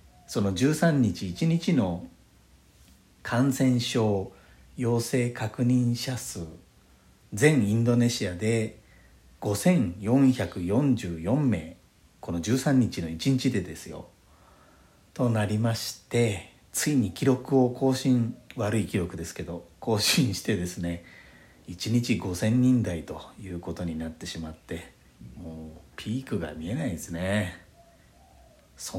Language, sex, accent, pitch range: Japanese, male, native, 85-130 Hz